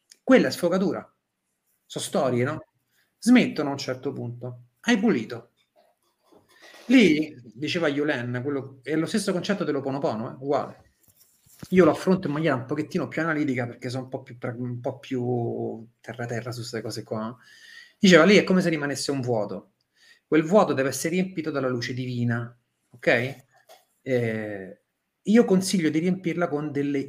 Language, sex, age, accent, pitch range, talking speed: Italian, male, 30-49, native, 125-165 Hz, 160 wpm